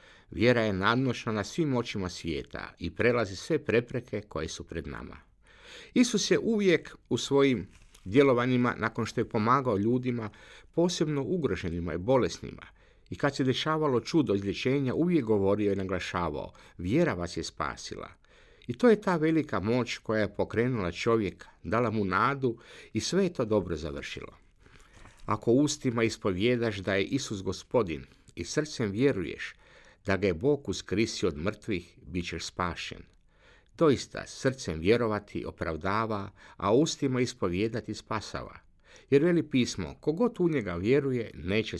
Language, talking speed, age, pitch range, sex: Croatian, 140 wpm, 50-69, 95-140 Hz, male